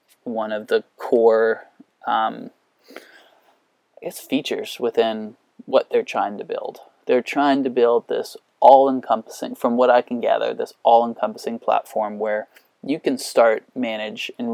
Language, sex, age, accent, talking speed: English, male, 20-39, American, 140 wpm